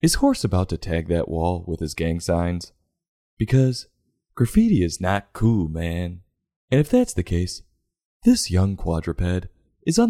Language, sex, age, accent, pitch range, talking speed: English, male, 20-39, American, 80-105 Hz, 160 wpm